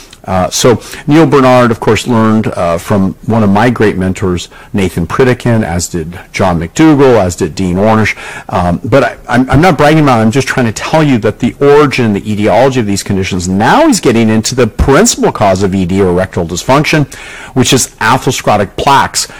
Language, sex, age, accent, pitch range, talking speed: English, male, 50-69, American, 100-130 Hz, 190 wpm